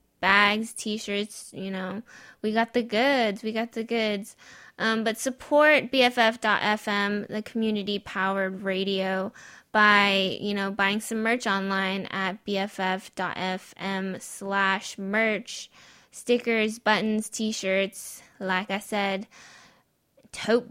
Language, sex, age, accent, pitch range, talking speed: English, female, 10-29, American, 195-235 Hz, 105 wpm